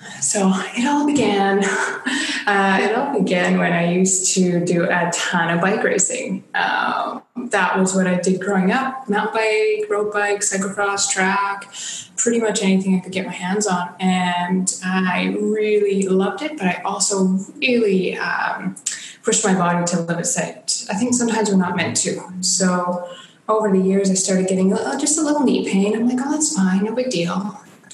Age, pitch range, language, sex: 20-39, 180-210 Hz, English, female